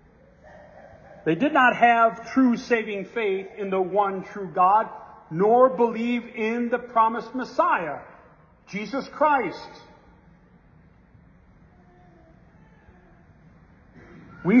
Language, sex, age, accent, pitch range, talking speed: English, male, 50-69, American, 205-275 Hz, 85 wpm